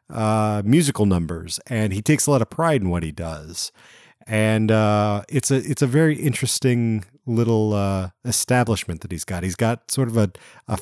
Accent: American